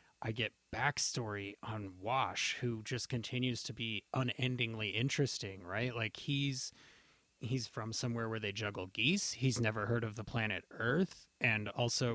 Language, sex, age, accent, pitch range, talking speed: English, male, 30-49, American, 110-140 Hz, 155 wpm